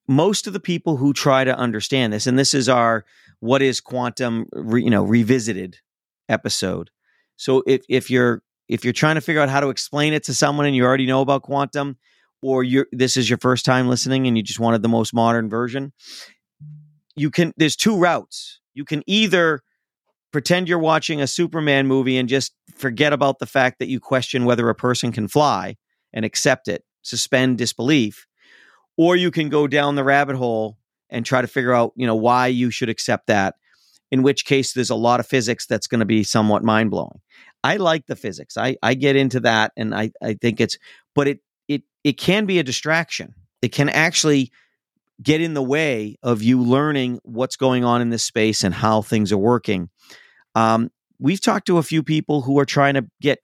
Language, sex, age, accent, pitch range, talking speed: English, male, 40-59, American, 120-145 Hz, 205 wpm